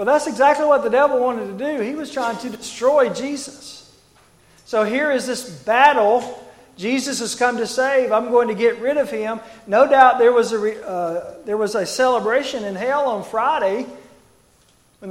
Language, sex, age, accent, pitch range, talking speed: English, male, 40-59, American, 175-240 Hz, 185 wpm